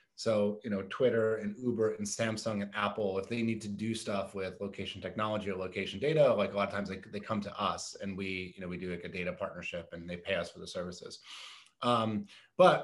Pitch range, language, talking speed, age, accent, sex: 105-130 Hz, English, 240 wpm, 30-49, American, male